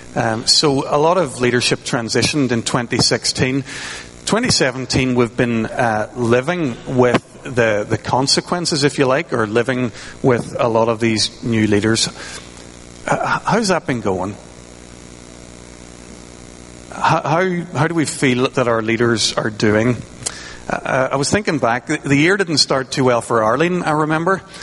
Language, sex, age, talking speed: English, male, 40-59, 150 wpm